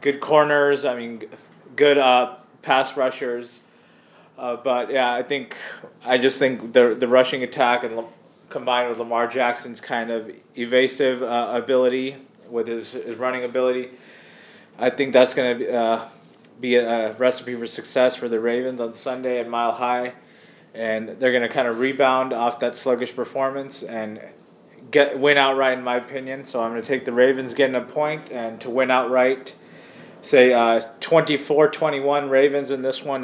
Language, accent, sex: English, American, male